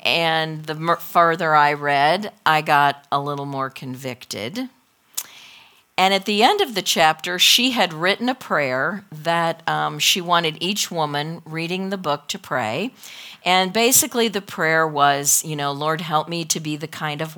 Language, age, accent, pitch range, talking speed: English, 50-69, American, 145-190 Hz, 170 wpm